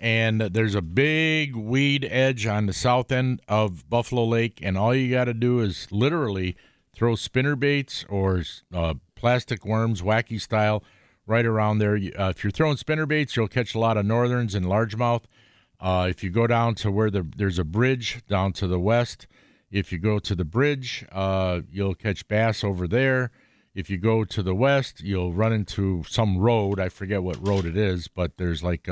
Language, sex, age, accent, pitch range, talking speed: English, male, 50-69, American, 95-125 Hz, 190 wpm